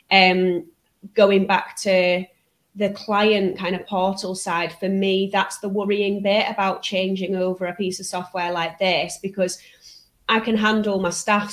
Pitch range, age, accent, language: 185-215 Hz, 20-39, British, English